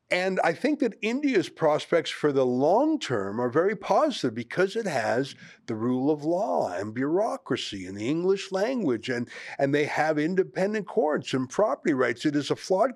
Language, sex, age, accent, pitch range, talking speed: English, male, 50-69, American, 125-185 Hz, 180 wpm